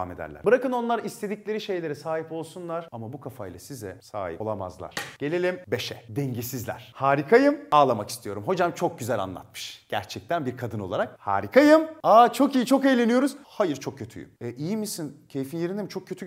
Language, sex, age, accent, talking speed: Turkish, male, 30-49, native, 160 wpm